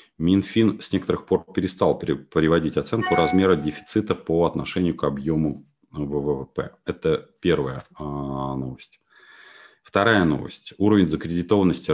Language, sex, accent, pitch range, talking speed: Russian, male, native, 75-90 Hz, 105 wpm